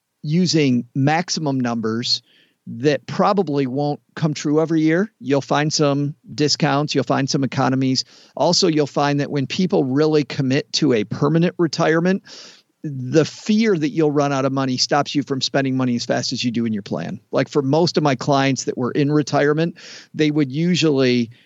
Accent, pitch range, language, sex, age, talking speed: American, 120-150 Hz, English, male, 50-69, 180 wpm